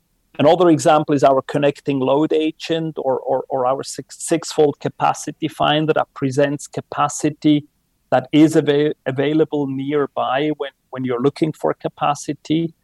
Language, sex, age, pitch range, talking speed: English, male, 40-59, 135-155 Hz, 135 wpm